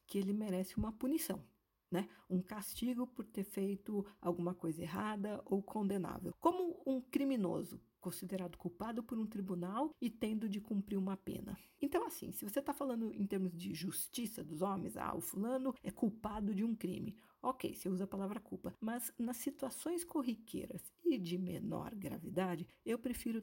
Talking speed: 170 wpm